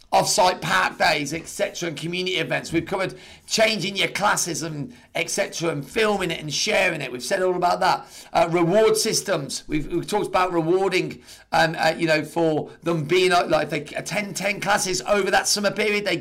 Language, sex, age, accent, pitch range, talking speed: English, male, 40-59, British, 165-190 Hz, 190 wpm